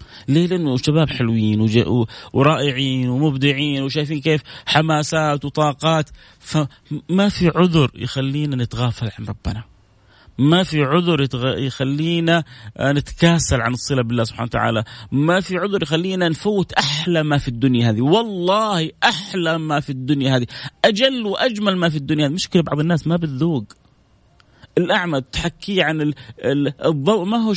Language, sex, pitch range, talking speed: Arabic, male, 125-160 Hz, 135 wpm